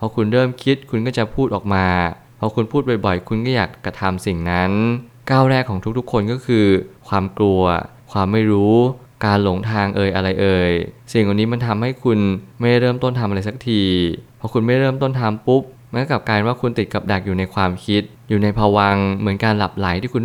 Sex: male